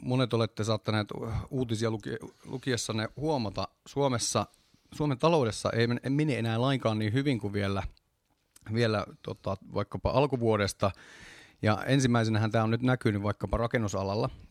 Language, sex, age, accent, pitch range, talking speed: Finnish, male, 30-49, native, 100-120 Hz, 120 wpm